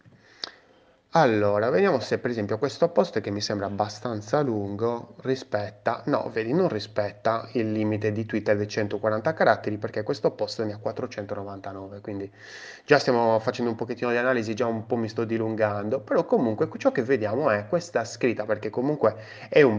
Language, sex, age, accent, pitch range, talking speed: Italian, male, 20-39, native, 105-140 Hz, 170 wpm